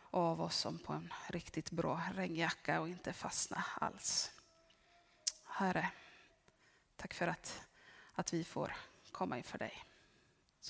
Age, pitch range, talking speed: 30-49, 200-315 Hz, 130 wpm